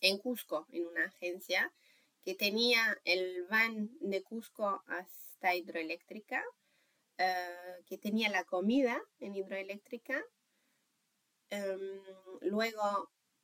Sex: female